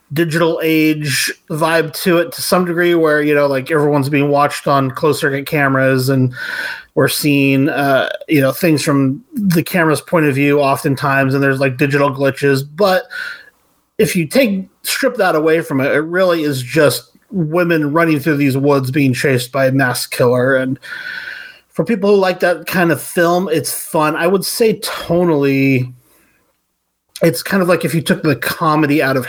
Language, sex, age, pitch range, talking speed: English, male, 30-49, 135-170 Hz, 180 wpm